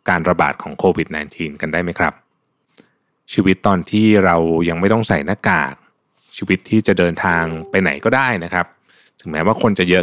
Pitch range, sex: 90-115 Hz, male